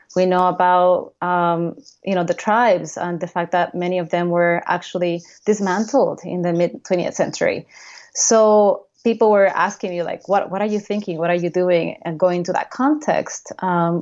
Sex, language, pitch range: female, English, 175-210 Hz